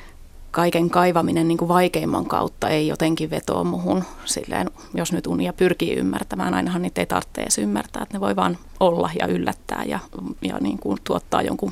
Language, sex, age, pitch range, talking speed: Finnish, female, 30-49, 165-190 Hz, 175 wpm